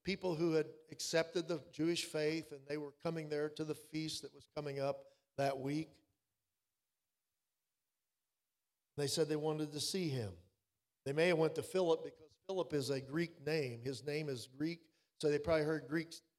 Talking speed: 180 wpm